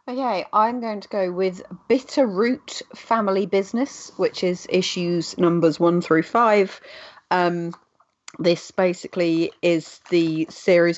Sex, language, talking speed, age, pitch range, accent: female, English, 125 wpm, 30-49, 155-175 Hz, British